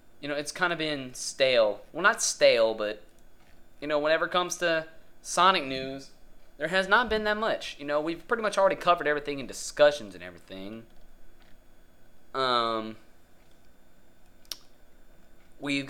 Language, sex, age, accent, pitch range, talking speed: English, male, 20-39, American, 90-145 Hz, 145 wpm